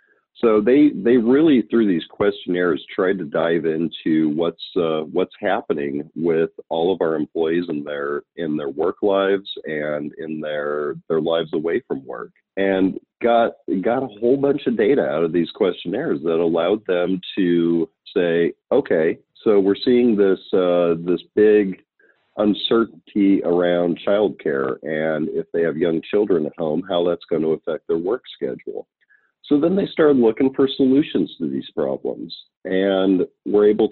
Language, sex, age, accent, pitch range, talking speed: English, male, 40-59, American, 85-110 Hz, 160 wpm